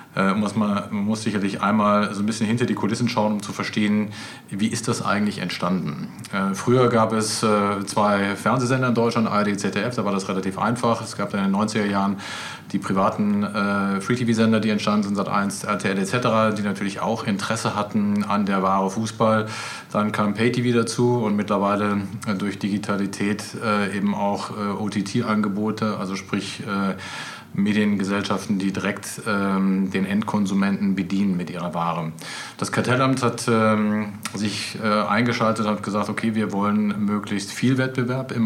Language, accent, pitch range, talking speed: German, German, 100-110 Hz, 170 wpm